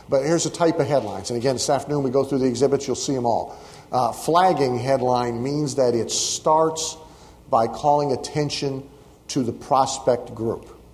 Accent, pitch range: American, 115-145 Hz